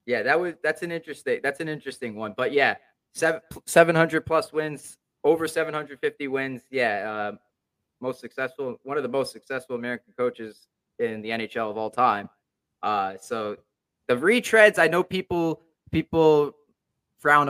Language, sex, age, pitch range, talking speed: English, male, 20-39, 110-150 Hz, 160 wpm